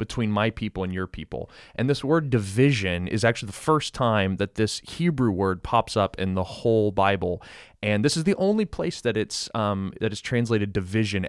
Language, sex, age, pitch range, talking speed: English, male, 20-39, 100-120 Hz, 200 wpm